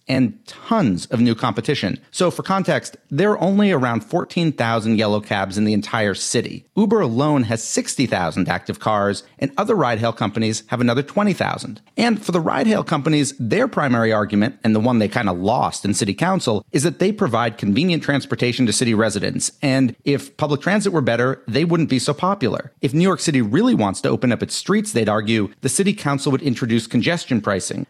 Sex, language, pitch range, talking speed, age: male, English, 110-155 Hz, 195 wpm, 40-59